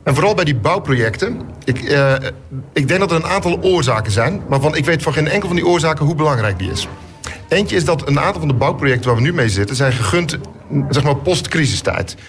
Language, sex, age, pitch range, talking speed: Dutch, male, 50-69, 115-150 Hz, 220 wpm